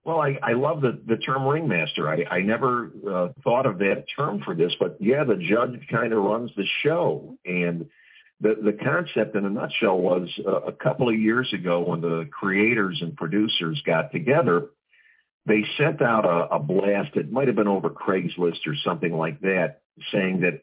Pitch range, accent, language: 90-120 Hz, American, English